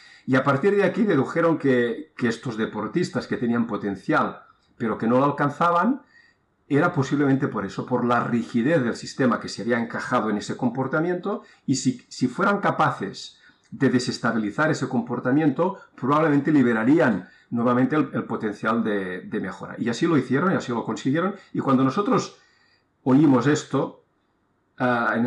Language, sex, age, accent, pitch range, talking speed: Spanish, male, 50-69, Spanish, 125-150 Hz, 160 wpm